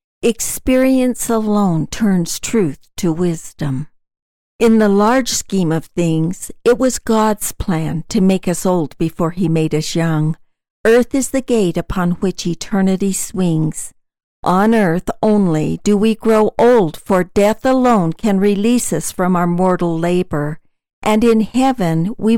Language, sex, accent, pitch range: English, female, American, 170-225 Hz